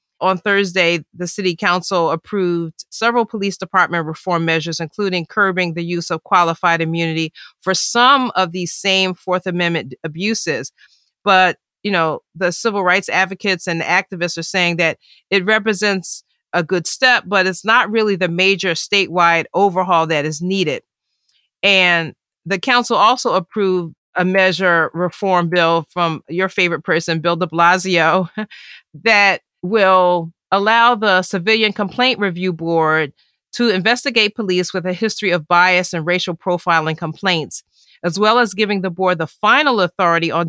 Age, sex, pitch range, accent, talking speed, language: 40-59, female, 165-195 Hz, American, 150 wpm, English